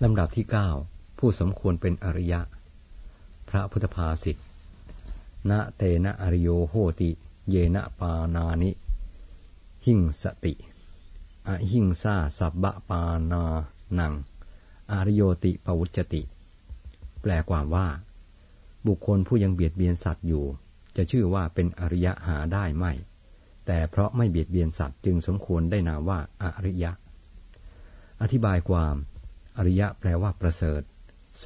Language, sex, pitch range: Thai, male, 80-95 Hz